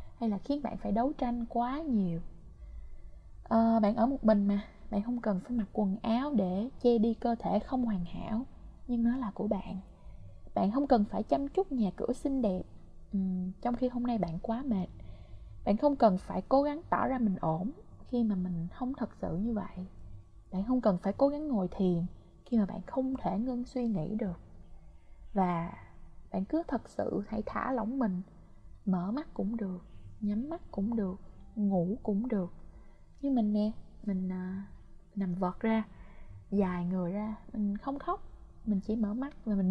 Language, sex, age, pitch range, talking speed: Vietnamese, female, 20-39, 185-245 Hz, 190 wpm